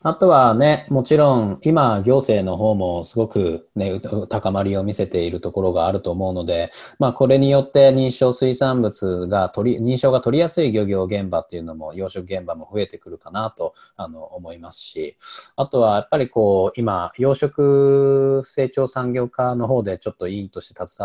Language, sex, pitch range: Japanese, male, 95-135 Hz